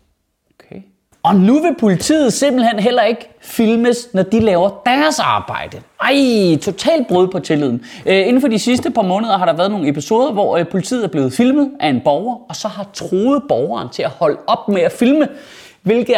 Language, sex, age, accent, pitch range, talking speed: Danish, male, 30-49, native, 180-255 Hz, 185 wpm